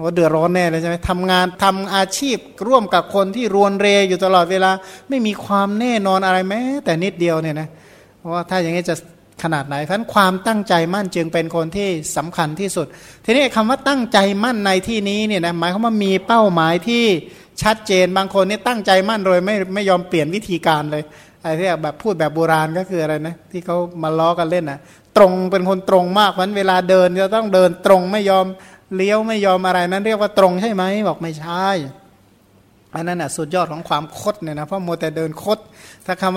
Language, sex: Thai, male